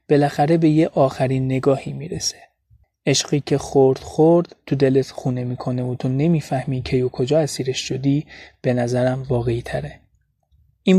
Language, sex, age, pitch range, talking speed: Persian, male, 30-49, 125-145 Hz, 145 wpm